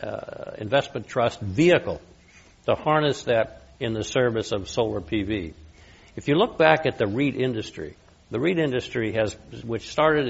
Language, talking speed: English, 155 wpm